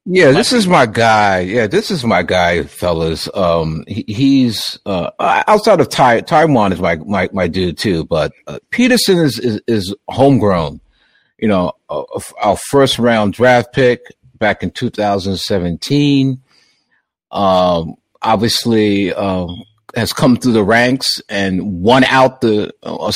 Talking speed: 140 wpm